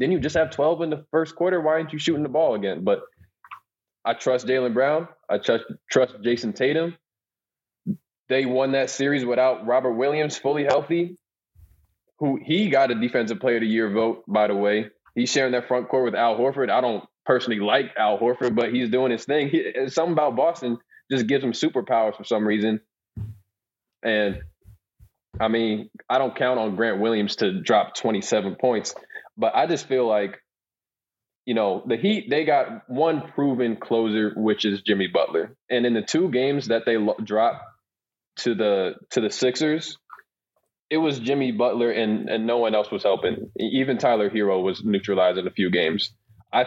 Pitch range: 105-140 Hz